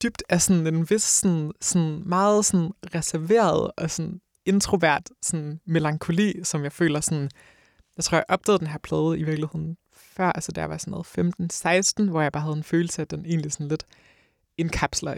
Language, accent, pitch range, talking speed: English, Danish, 140-165 Hz, 190 wpm